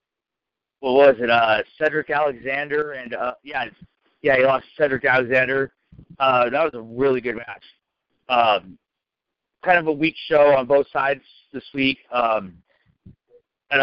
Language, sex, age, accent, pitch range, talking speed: English, male, 50-69, American, 130-150 Hz, 150 wpm